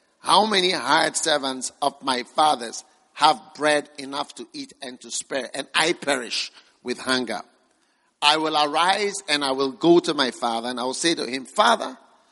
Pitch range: 140-190 Hz